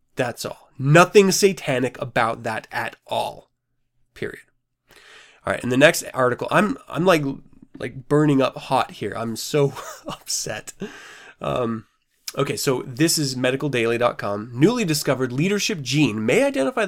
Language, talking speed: English, 135 wpm